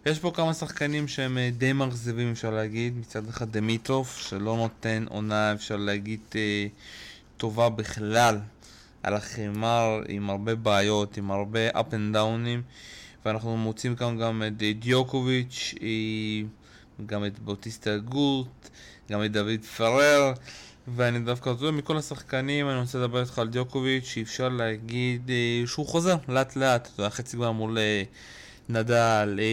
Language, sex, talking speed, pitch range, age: Hebrew, male, 135 wpm, 110-130 Hz, 20-39